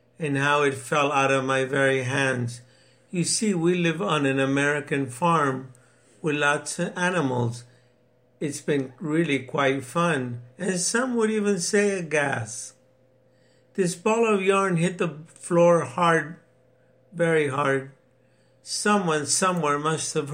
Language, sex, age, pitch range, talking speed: English, male, 60-79, 135-175 Hz, 140 wpm